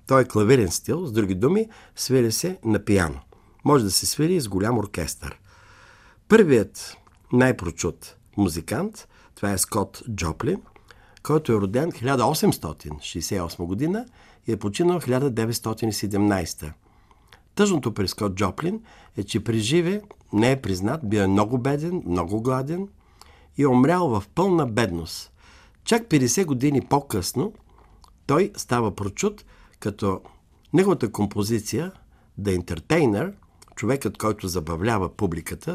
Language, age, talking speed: Bulgarian, 50-69, 120 wpm